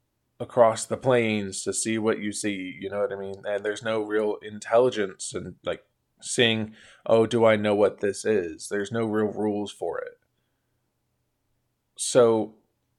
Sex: male